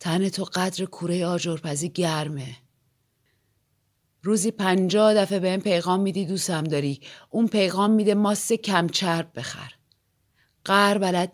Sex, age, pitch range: female, 30-49, 130-200 Hz